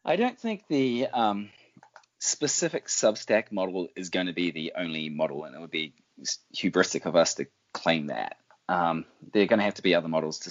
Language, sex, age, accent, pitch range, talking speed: English, male, 20-39, Australian, 80-100 Hz, 205 wpm